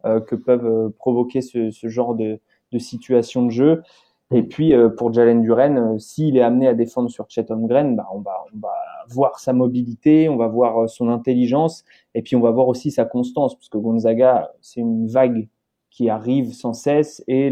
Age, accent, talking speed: 20-39, French, 200 wpm